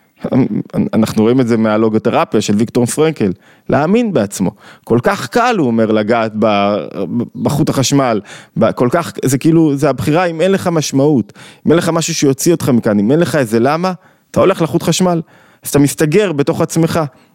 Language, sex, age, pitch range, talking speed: Hebrew, male, 20-39, 115-155 Hz, 170 wpm